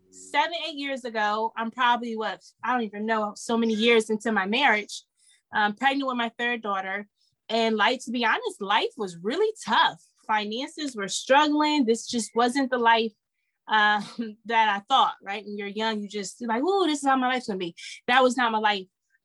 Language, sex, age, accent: English, female, 20-39, American